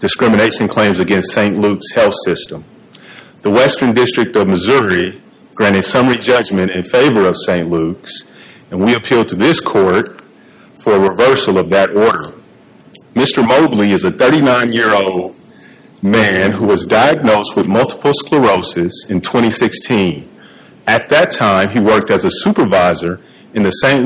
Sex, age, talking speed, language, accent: male, 40-59, 140 wpm, English, American